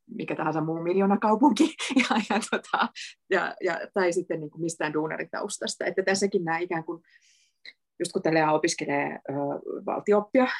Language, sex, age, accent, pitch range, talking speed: Finnish, female, 30-49, native, 170-220 Hz, 155 wpm